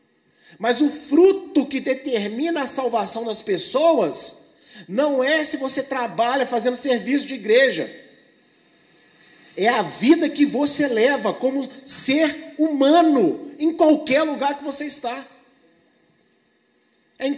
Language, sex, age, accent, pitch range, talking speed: Portuguese, male, 40-59, Brazilian, 245-300 Hz, 120 wpm